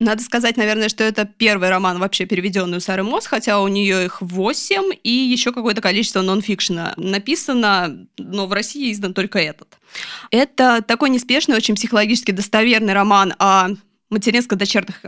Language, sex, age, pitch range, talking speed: Russian, female, 20-39, 190-235 Hz, 155 wpm